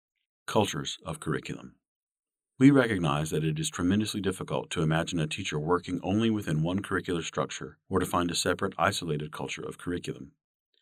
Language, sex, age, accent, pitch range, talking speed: English, male, 50-69, American, 80-95 Hz, 160 wpm